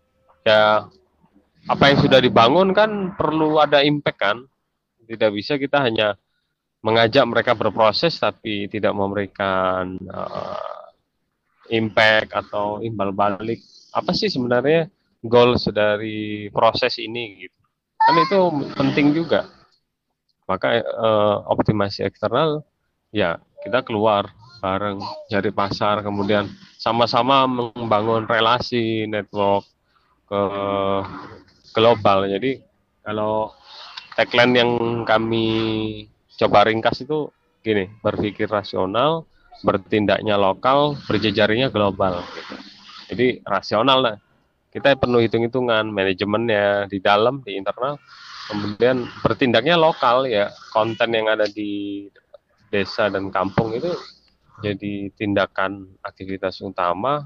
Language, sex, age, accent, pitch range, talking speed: Indonesian, male, 20-39, native, 100-120 Hz, 100 wpm